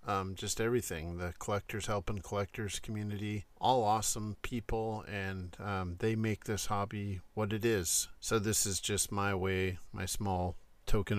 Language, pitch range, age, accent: English, 95-110 Hz, 50-69, American